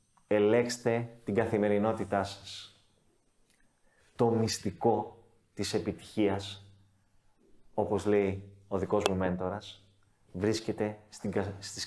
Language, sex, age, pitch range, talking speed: Greek, male, 30-49, 100-125 Hz, 80 wpm